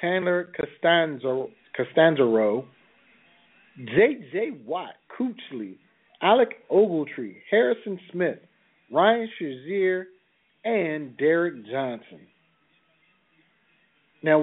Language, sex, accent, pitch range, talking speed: English, male, American, 140-175 Hz, 65 wpm